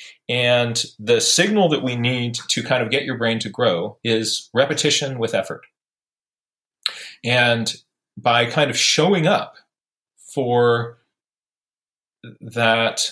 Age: 40-59